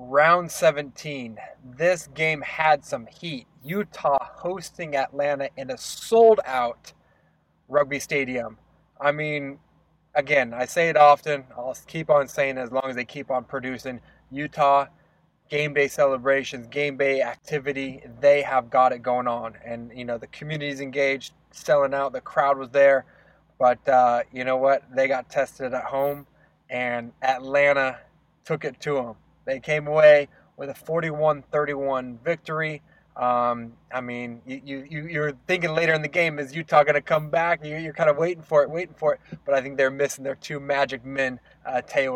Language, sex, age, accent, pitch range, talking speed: English, male, 20-39, American, 130-150 Hz, 170 wpm